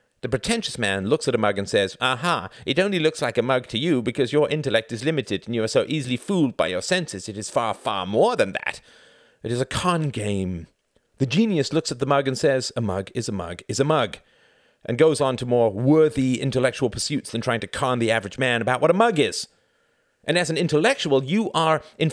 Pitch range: 120-190 Hz